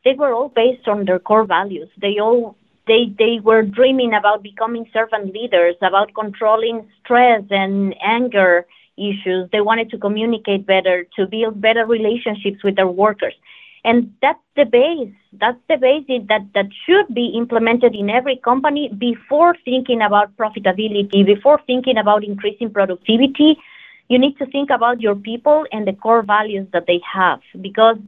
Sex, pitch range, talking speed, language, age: female, 195-240 Hz, 160 wpm, English, 20-39